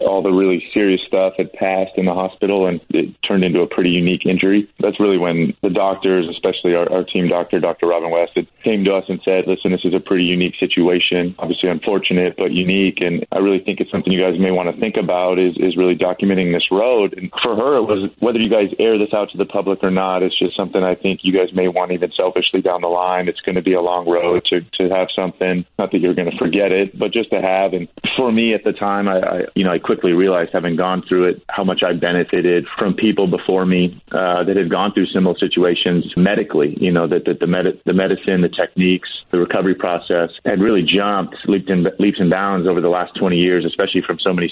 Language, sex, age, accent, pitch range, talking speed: English, male, 20-39, American, 90-95 Hz, 245 wpm